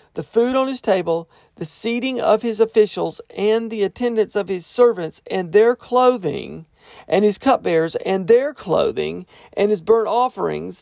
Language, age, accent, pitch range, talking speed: English, 40-59, American, 175-235 Hz, 160 wpm